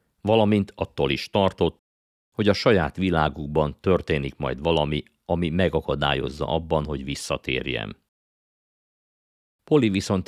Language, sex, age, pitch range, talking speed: Hungarian, male, 50-69, 70-90 Hz, 105 wpm